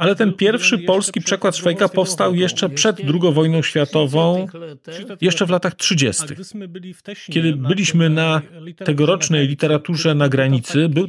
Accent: native